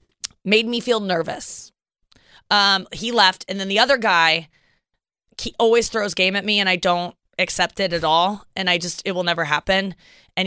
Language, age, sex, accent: English, 20-39, female, American